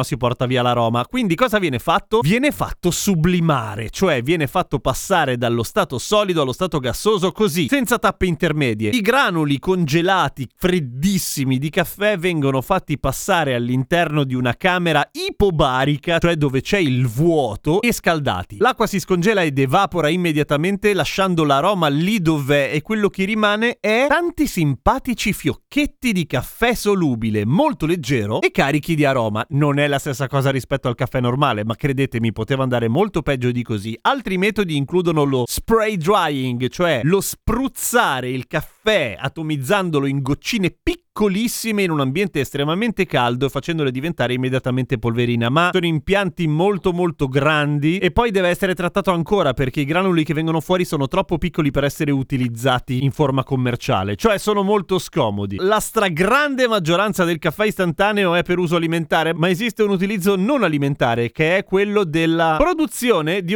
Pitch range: 135-195 Hz